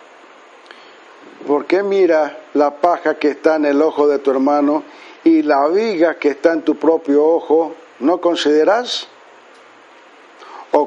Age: 50-69